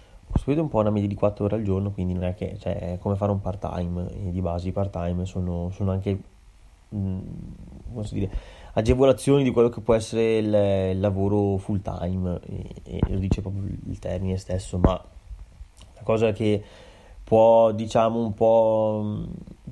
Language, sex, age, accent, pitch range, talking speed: Italian, male, 20-39, native, 90-105 Hz, 175 wpm